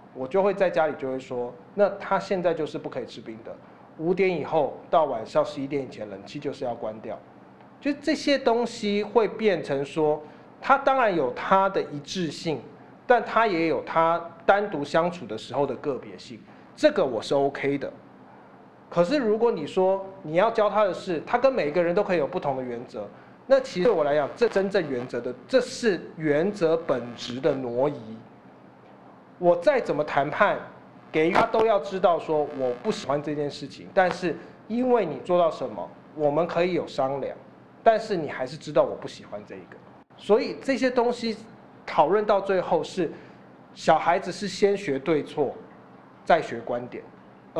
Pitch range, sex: 140-205 Hz, male